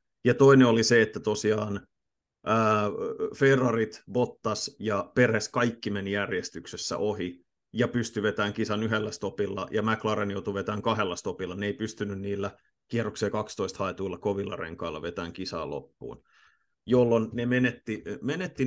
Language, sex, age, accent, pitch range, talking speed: Finnish, male, 30-49, native, 100-120 Hz, 140 wpm